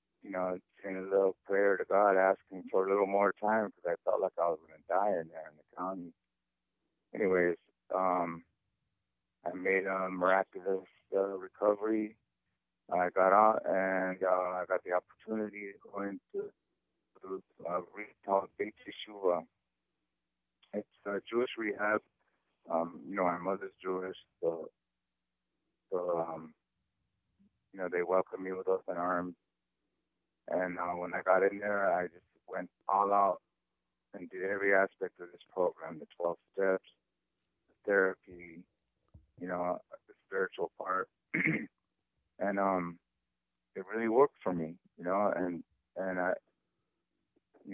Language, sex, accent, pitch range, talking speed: English, male, American, 90-100 Hz, 145 wpm